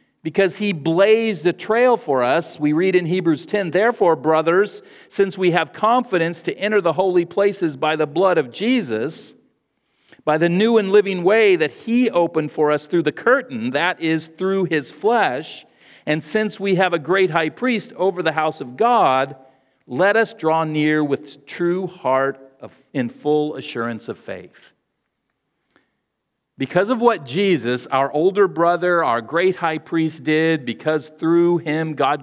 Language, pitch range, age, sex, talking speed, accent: English, 155-185 Hz, 50-69, male, 165 wpm, American